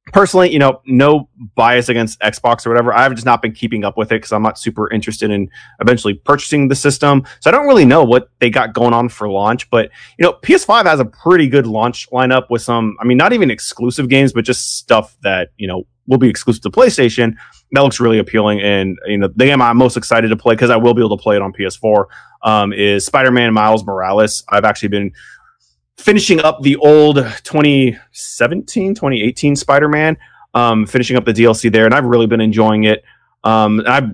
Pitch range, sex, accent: 110-130 Hz, male, American